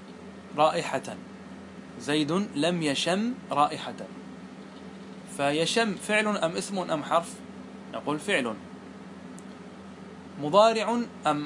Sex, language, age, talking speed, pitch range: male, Arabic, 30-49, 80 wpm, 150-210 Hz